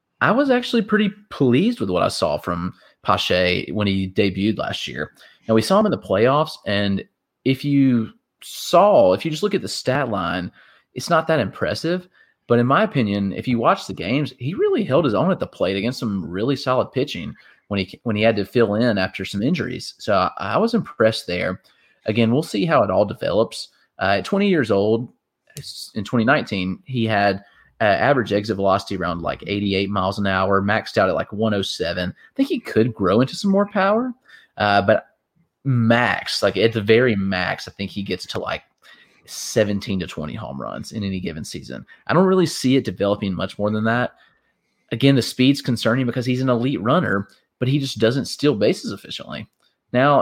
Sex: male